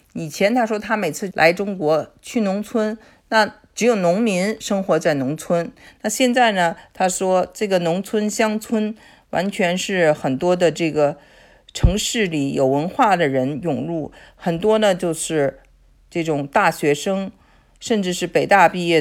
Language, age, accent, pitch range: Chinese, 50-69, native, 155-205 Hz